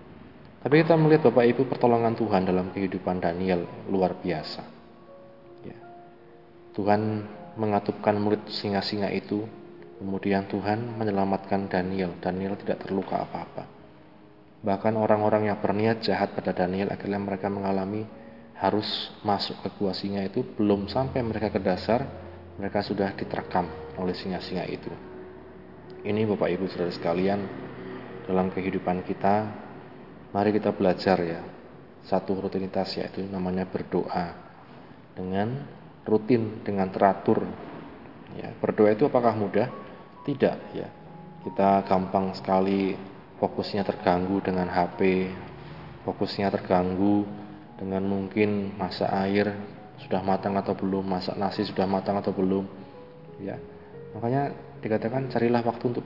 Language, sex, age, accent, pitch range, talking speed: Indonesian, male, 20-39, native, 95-105 Hz, 120 wpm